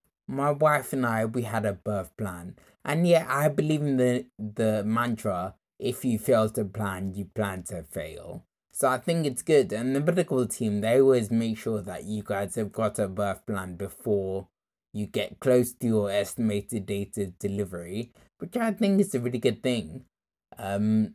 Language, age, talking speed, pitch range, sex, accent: English, 20-39, 185 wpm, 105-130 Hz, male, British